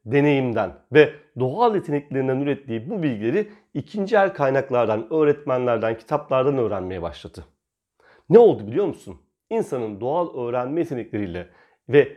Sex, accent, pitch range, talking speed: male, native, 115-175 Hz, 115 wpm